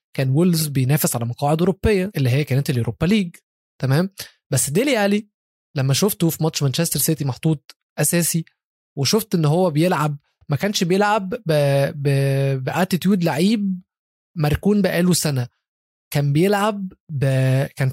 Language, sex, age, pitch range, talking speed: Arabic, male, 20-39, 140-180 Hz, 125 wpm